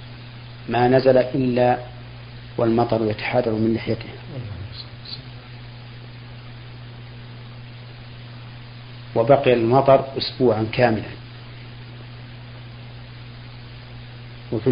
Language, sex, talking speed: Arabic, male, 50 wpm